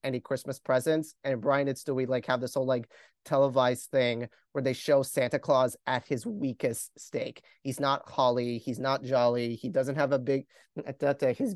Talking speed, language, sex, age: 180 wpm, English, male, 30-49